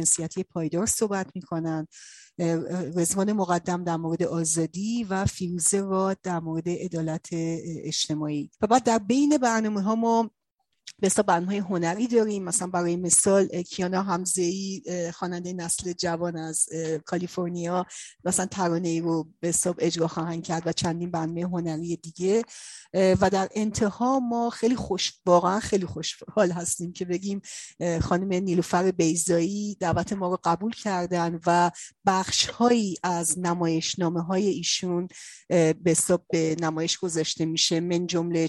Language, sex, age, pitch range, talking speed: Persian, female, 40-59, 165-190 Hz, 130 wpm